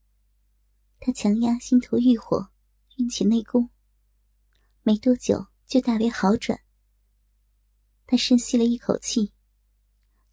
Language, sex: Chinese, male